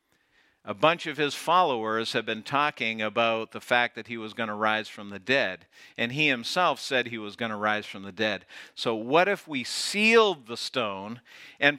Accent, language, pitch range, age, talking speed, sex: American, English, 145-195 Hz, 50-69, 205 wpm, male